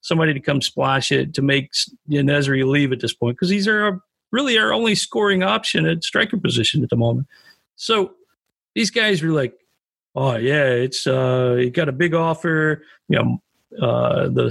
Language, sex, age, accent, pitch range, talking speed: English, male, 50-69, American, 140-205 Hz, 180 wpm